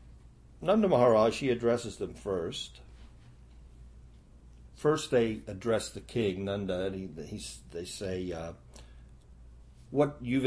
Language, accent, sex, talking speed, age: English, American, male, 115 wpm, 60-79